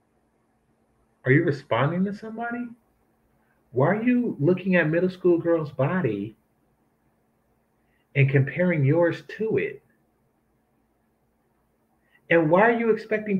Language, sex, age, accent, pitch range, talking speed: English, male, 30-49, American, 130-195 Hz, 105 wpm